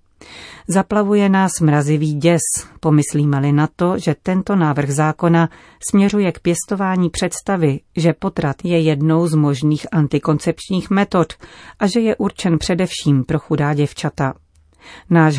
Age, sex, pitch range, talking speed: 40-59, female, 145-175 Hz, 125 wpm